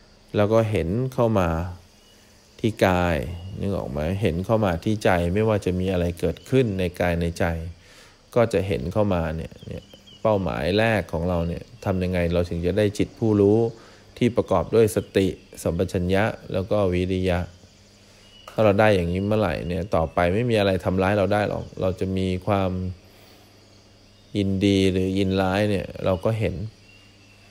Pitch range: 90-105 Hz